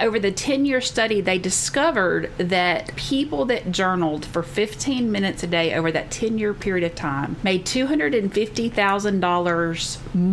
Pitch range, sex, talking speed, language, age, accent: 180-240 Hz, female, 135 wpm, English, 40-59, American